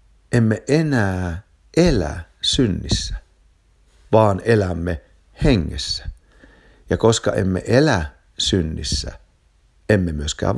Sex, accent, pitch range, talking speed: male, native, 80-105 Hz, 80 wpm